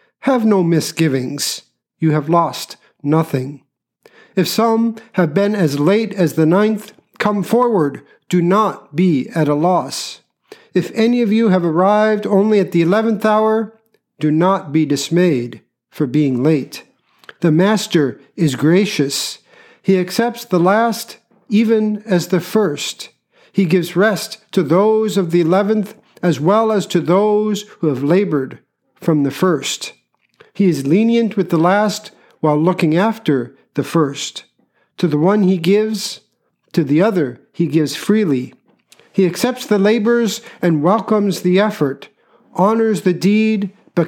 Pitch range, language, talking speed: 160-215 Hz, English, 145 wpm